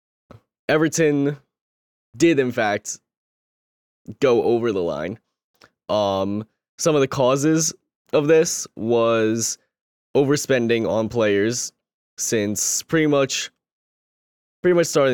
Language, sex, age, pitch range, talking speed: English, male, 10-29, 105-130 Hz, 100 wpm